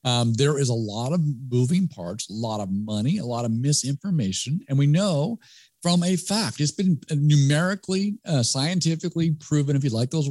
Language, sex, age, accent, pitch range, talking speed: English, male, 50-69, American, 115-155 Hz, 185 wpm